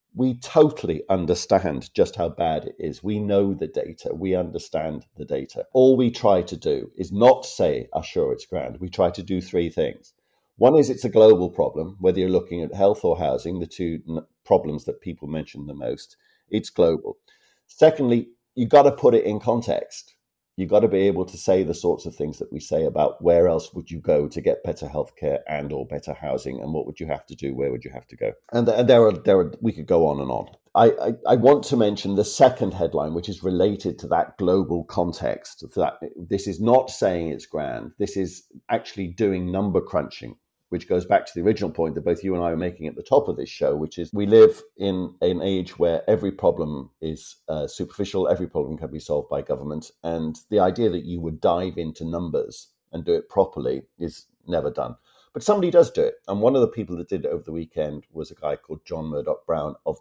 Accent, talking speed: British, 225 wpm